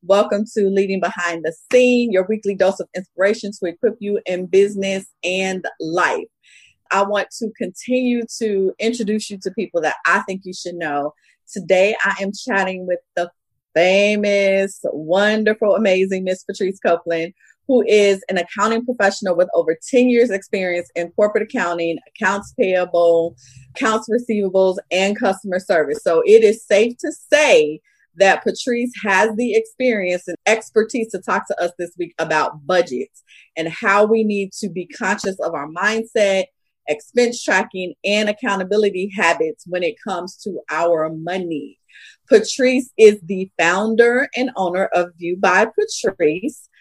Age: 30-49